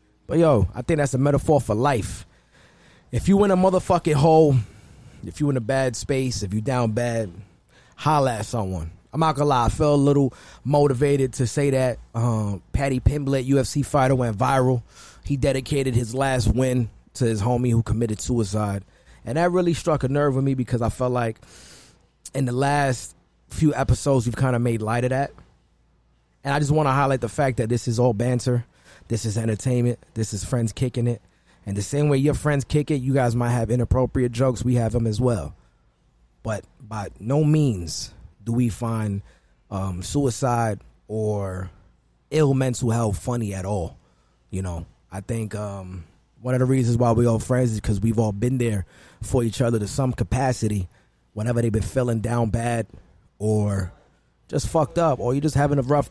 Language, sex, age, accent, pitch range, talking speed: English, male, 30-49, American, 105-135 Hz, 195 wpm